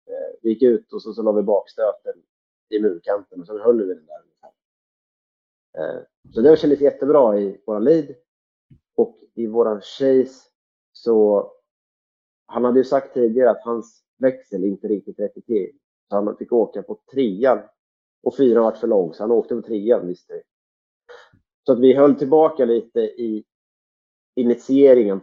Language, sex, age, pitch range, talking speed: Swedish, male, 30-49, 105-160 Hz, 160 wpm